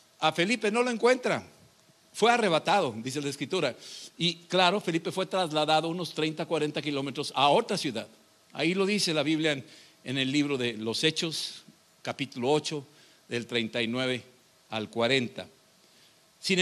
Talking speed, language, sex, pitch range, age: 150 wpm, Spanish, male, 145-185 Hz, 60-79